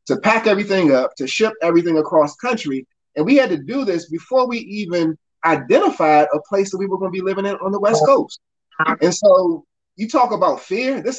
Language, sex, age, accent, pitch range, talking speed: English, male, 30-49, American, 150-200 Hz, 215 wpm